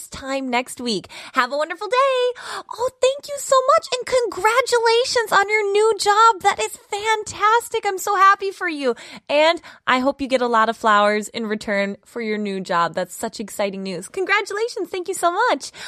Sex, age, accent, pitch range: female, 20-39, American, 225-370 Hz